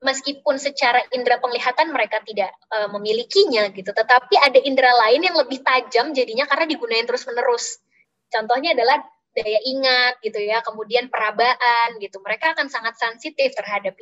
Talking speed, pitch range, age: 145 wpm, 220-290 Hz, 20-39